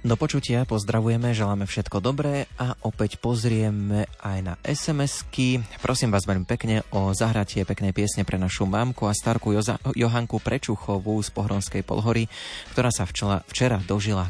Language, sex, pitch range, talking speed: Slovak, male, 95-115 Hz, 145 wpm